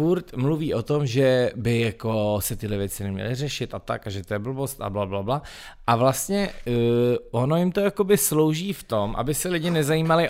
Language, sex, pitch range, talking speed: Czech, male, 105-145 Hz, 205 wpm